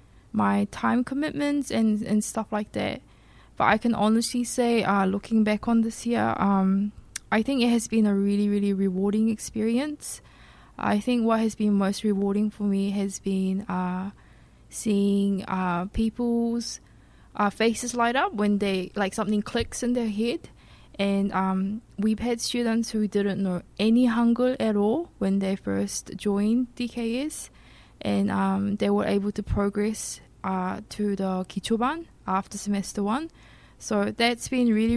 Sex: female